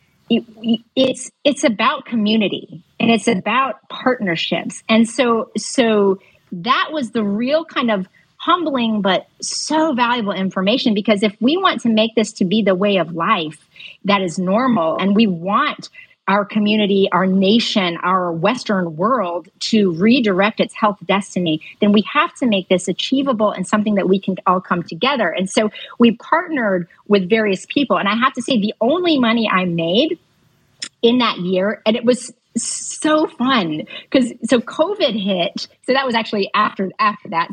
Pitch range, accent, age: 195-250 Hz, American, 40-59